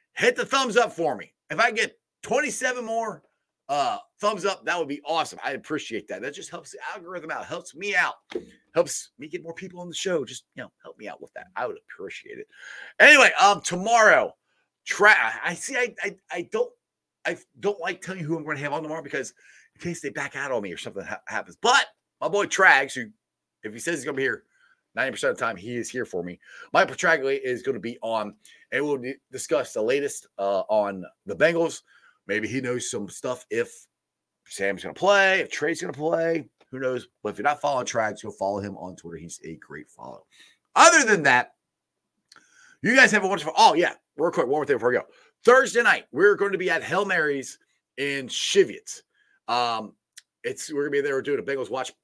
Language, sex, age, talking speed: English, male, 30-49, 220 wpm